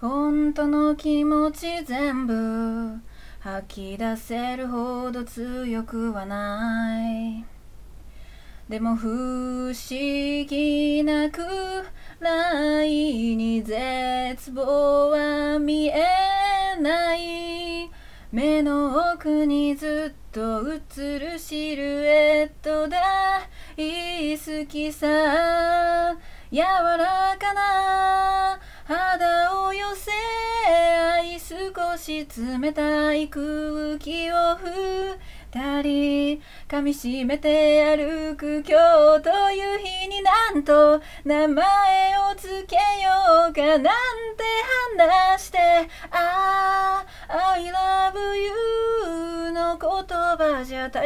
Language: Japanese